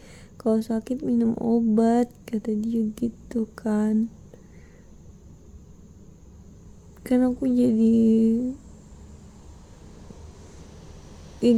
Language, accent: Indonesian, native